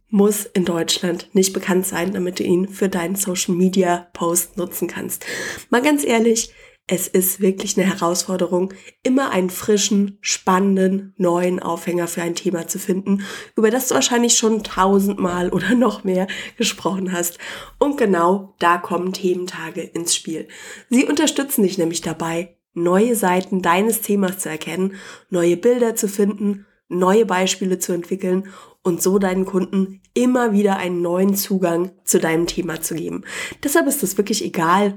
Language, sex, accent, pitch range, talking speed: German, female, German, 180-205 Hz, 155 wpm